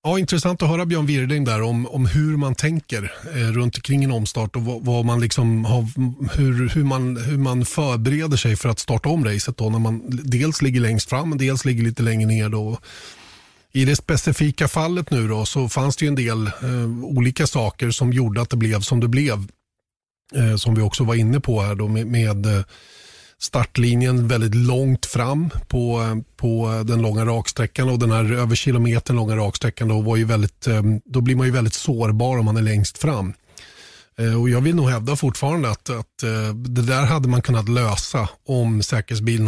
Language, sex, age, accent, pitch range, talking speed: Swedish, male, 30-49, native, 110-135 Hz, 195 wpm